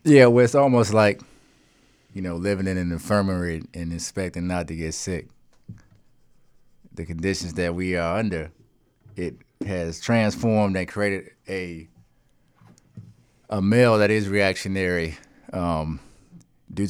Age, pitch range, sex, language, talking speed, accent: 30-49, 80-95 Hz, male, English, 130 wpm, American